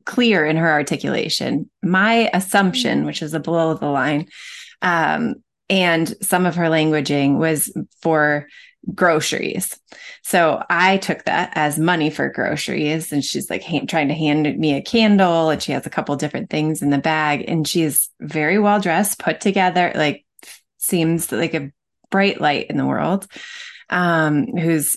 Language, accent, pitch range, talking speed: English, American, 155-195 Hz, 160 wpm